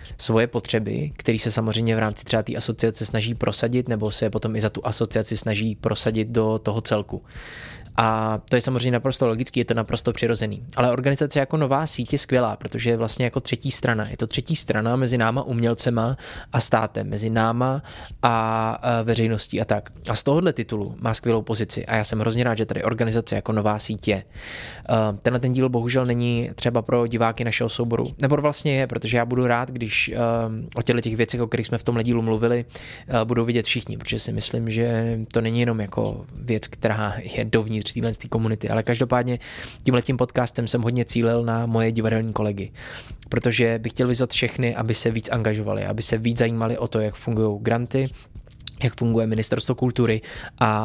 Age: 20-39